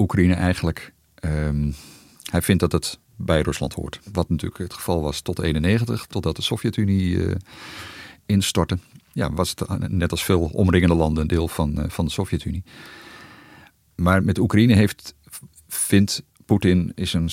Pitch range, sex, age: 80-100 Hz, male, 50-69